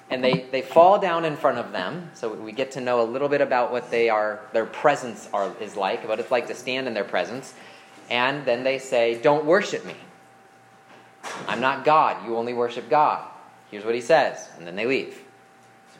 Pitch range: 125-165 Hz